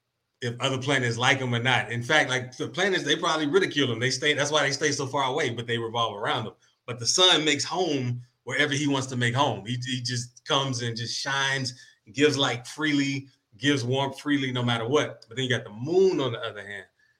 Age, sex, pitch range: 30-49, male, 120-145 Hz